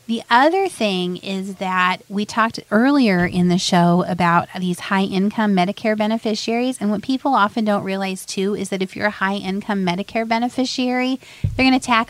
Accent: American